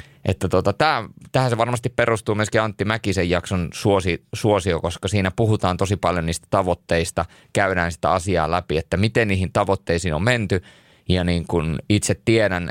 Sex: male